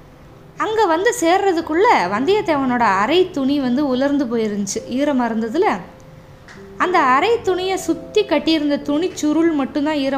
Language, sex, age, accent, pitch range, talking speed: Tamil, female, 20-39, native, 230-315 Hz, 110 wpm